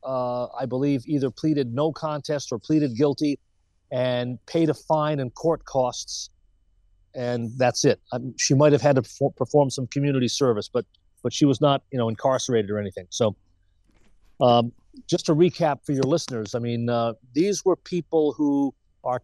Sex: male